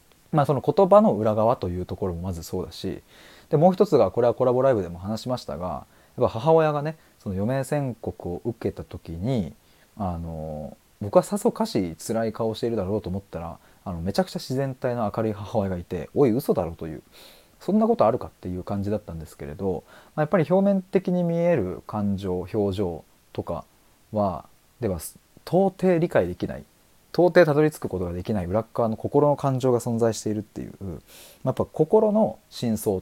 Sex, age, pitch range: male, 20-39, 95-150 Hz